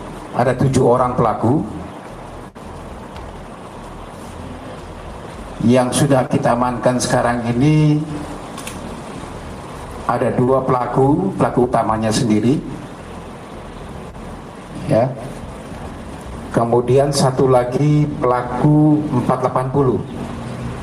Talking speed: 65 wpm